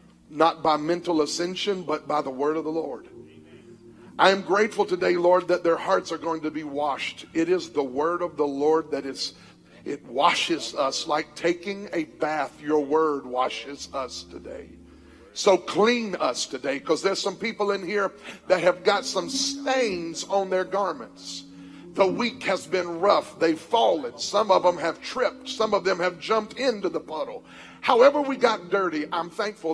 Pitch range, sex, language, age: 165-245 Hz, male, English, 50-69